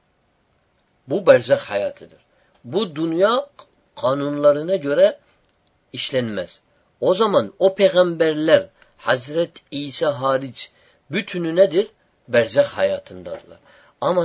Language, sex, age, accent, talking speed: Turkish, male, 50-69, native, 85 wpm